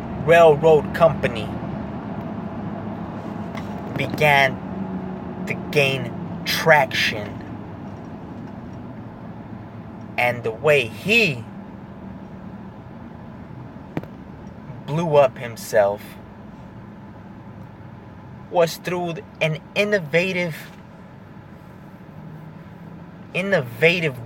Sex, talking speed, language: male, 45 wpm, English